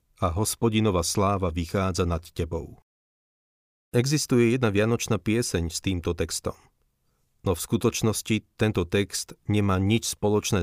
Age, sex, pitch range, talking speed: 40-59, male, 85-110 Hz, 120 wpm